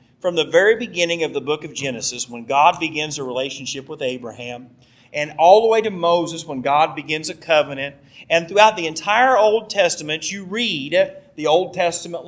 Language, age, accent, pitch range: English, 40-59, American, 145-210 Hz